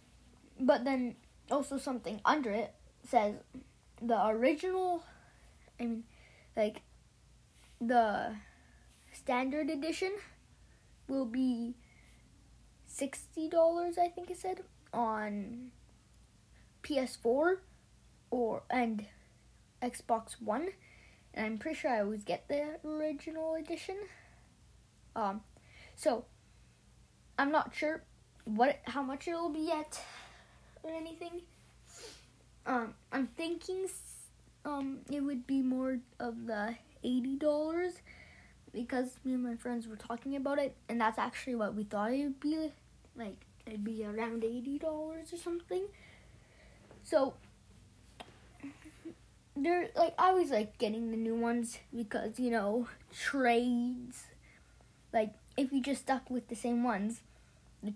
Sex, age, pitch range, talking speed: female, 20-39, 230-310 Hz, 115 wpm